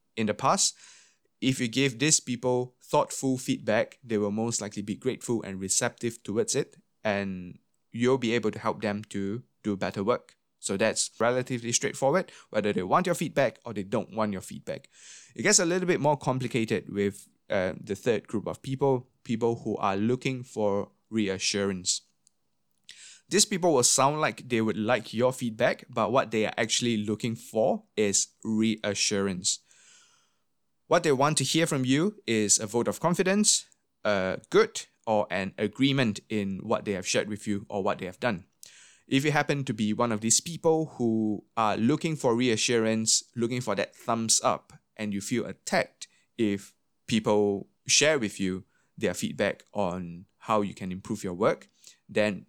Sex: male